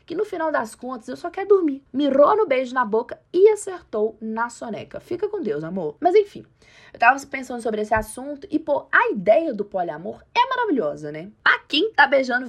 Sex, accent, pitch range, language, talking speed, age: female, Brazilian, 215-350 Hz, Portuguese, 205 wpm, 20-39